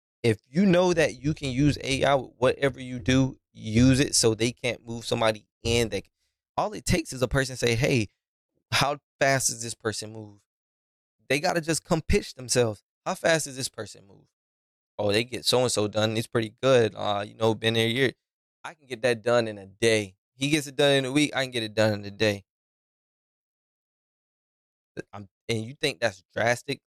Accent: American